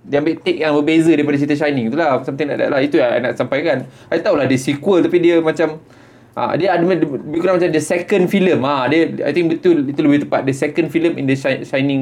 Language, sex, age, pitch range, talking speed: Malay, male, 20-39, 120-155 Hz, 240 wpm